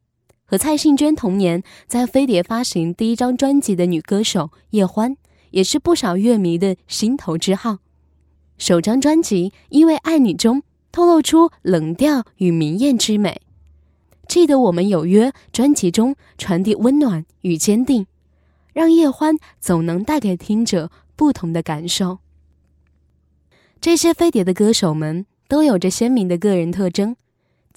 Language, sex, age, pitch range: Chinese, female, 10-29, 180-270 Hz